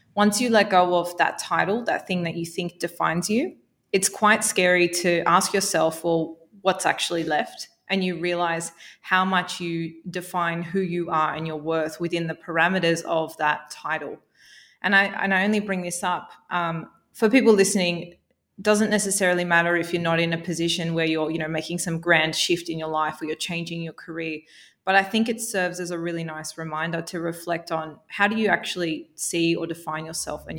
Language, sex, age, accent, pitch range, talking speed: English, female, 20-39, Australian, 165-185 Hz, 200 wpm